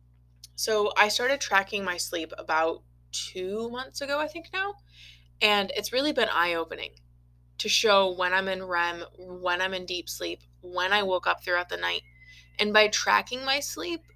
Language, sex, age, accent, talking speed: English, female, 20-39, American, 180 wpm